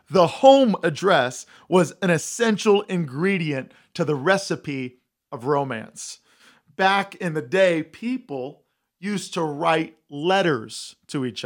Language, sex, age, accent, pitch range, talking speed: English, male, 40-59, American, 160-200 Hz, 120 wpm